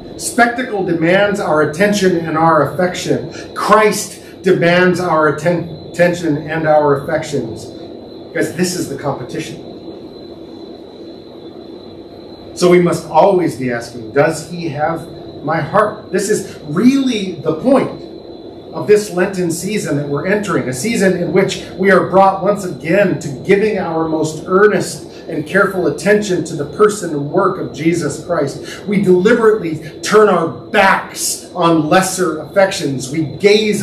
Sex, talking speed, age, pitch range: male, 135 wpm, 40-59, 155-200 Hz